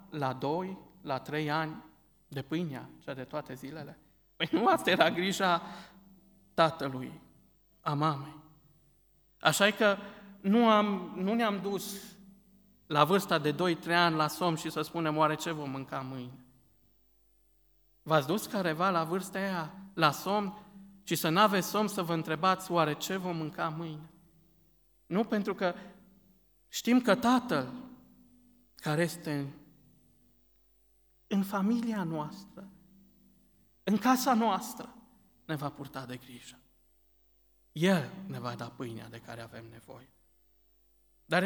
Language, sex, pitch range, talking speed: Romanian, male, 145-195 Hz, 130 wpm